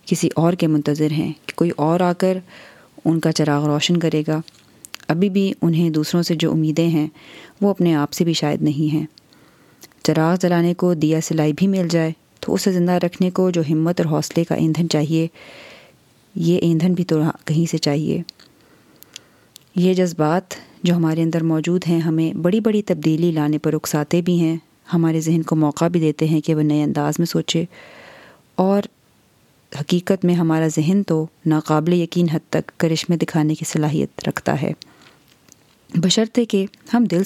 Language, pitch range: Urdu, 155-180 Hz